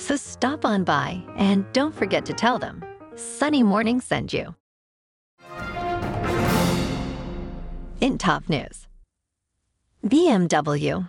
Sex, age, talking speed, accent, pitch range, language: female, 40-59, 95 wpm, American, 145-235 Hz, English